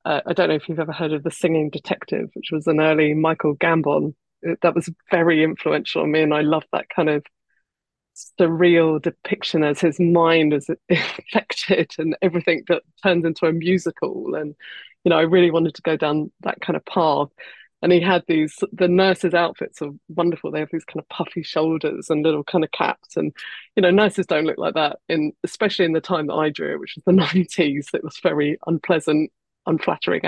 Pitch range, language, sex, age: 160-195 Hz, English, female, 20-39